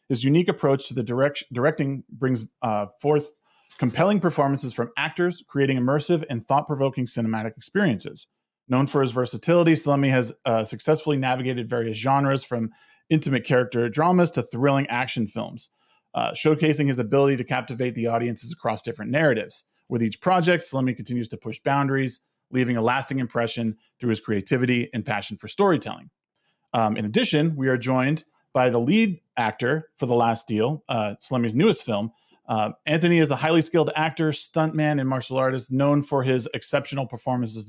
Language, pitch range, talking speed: English, 120-150 Hz, 160 wpm